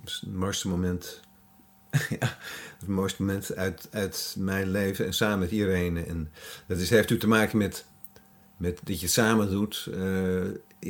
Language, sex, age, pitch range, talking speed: Dutch, male, 50-69, 90-105 Hz, 155 wpm